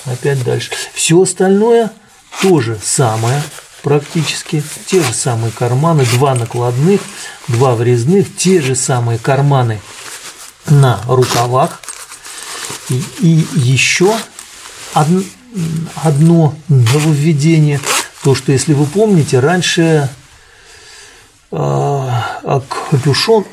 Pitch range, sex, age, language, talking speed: 120-165 Hz, male, 50-69, Russian, 85 wpm